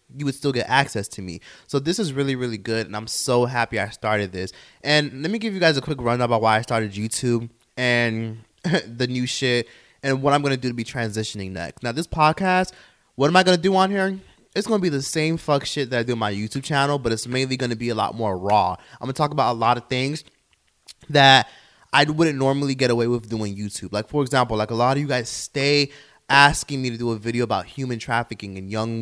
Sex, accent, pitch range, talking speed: male, American, 115-145 Hz, 255 wpm